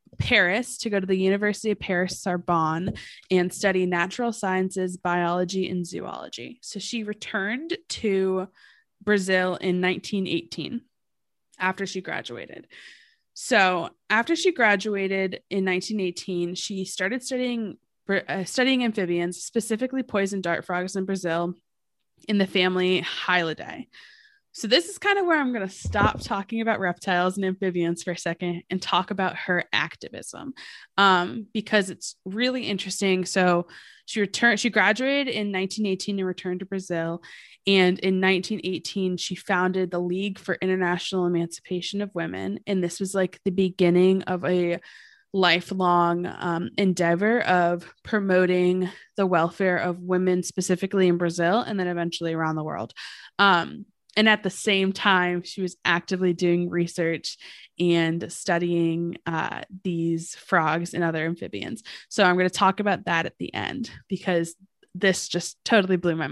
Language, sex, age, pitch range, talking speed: English, female, 20-39, 175-205 Hz, 145 wpm